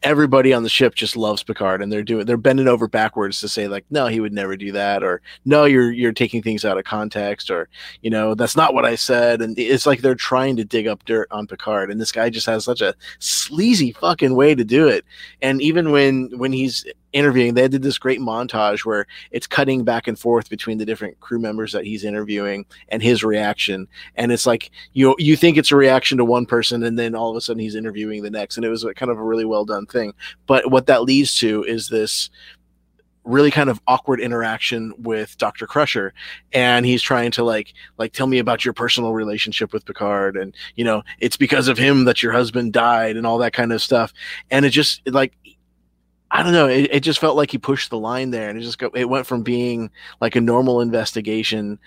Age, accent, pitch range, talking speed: 30-49, American, 105-130 Hz, 230 wpm